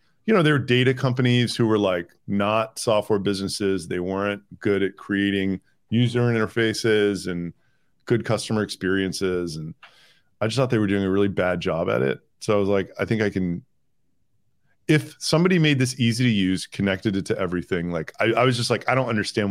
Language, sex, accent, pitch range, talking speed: English, male, American, 100-125 Hz, 195 wpm